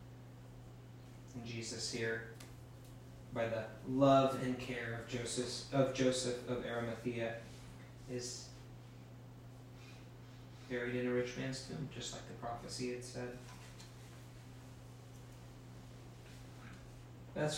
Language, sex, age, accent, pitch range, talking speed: English, male, 30-49, American, 120-125 Hz, 90 wpm